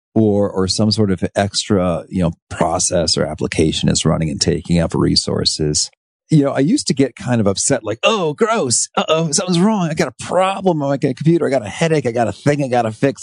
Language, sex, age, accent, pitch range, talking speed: English, male, 40-59, American, 85-125 Hz, 235 wpm